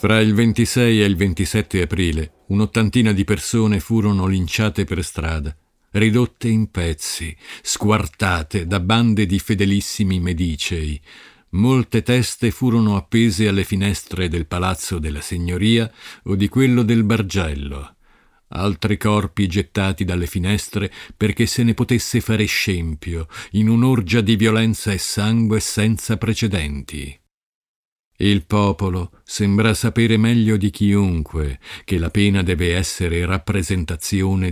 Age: 50-69